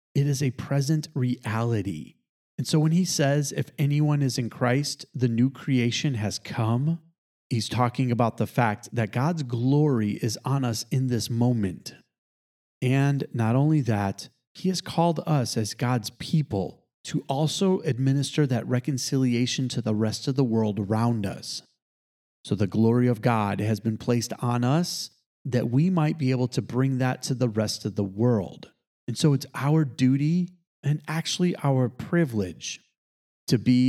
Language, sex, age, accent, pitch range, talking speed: English, male, 30-49, American, 115-150 Hz, 165 wpm